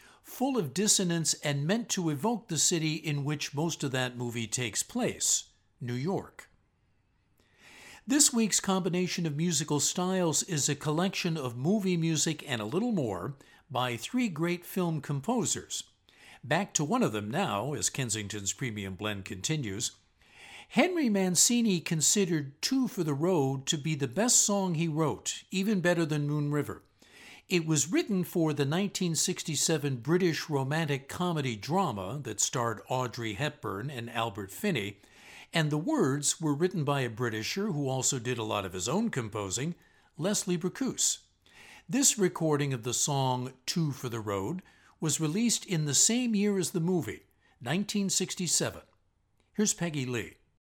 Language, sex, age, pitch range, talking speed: English, male, 60-79, 125-180 Hz, 150 wpm